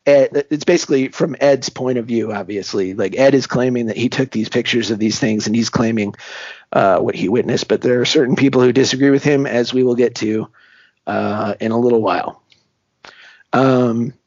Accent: American